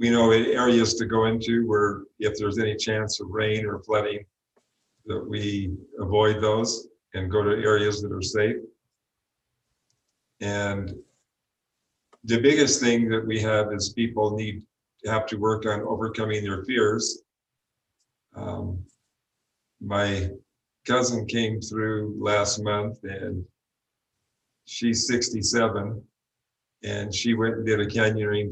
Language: English